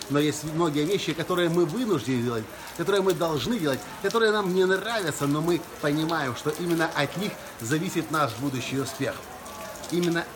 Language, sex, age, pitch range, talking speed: Russian, male, 50-69, 120-170 Hz, 160 wpm